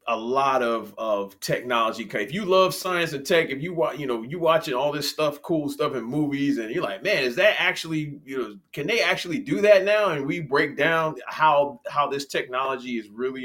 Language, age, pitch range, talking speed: English, 30-49, 105-150 Hz, 225 wpm